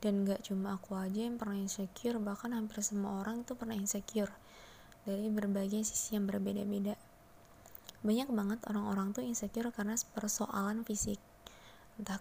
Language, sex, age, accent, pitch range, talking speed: Indonesian, female, 20-39, native, 200-235 Hz, 145 wpm